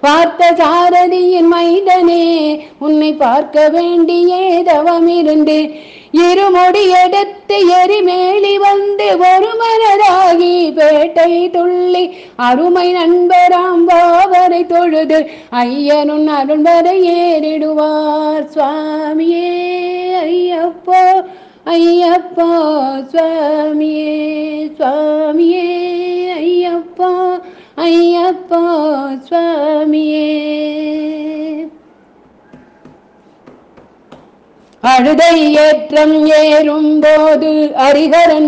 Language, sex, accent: Tamil, female, native